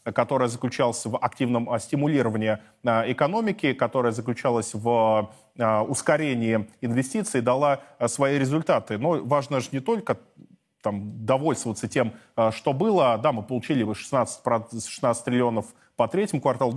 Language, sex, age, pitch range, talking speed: Russian, male, 20-39, 115-145 Hz, 115 wpm